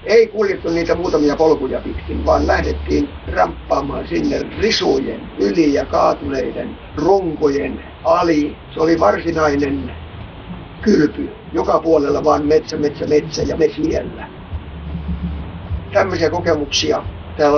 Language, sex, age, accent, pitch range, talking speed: Finnish, male, 60-79, native, 135-170 Hz, 105 wpm